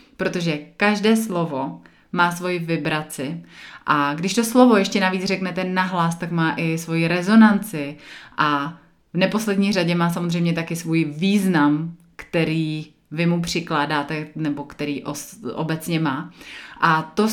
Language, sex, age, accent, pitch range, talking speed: Czech, female, 30-49, native, 165-205 Hz, 135 wpm